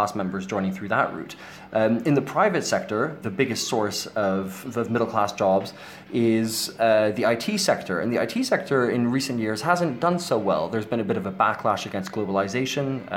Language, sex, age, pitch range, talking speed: English, male, 20-39, 100-125 Hz, 190 wpm